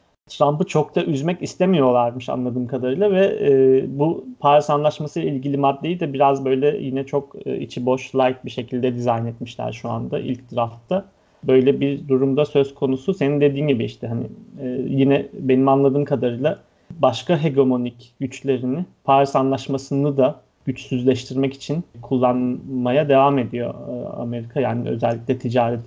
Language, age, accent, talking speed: Turkish, 30-49, native, 140 wpm